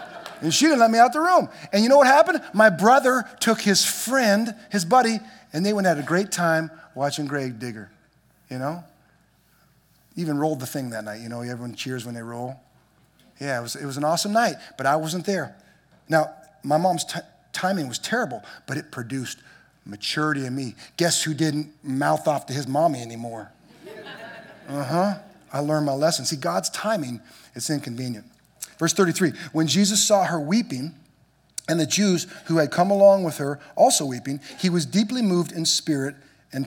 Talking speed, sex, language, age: 190 wpm, male, English, 30-49